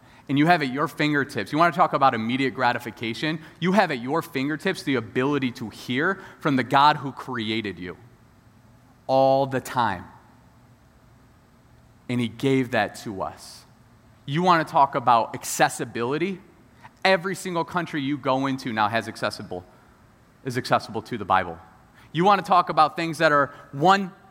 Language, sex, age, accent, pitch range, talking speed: English, male, 30-49, American, 110-140 Hz, 165 wpm